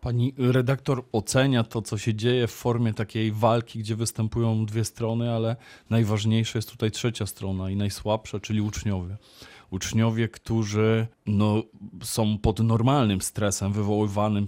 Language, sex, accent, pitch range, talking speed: Polish, male, native, 105-120 Hz, 135 wpm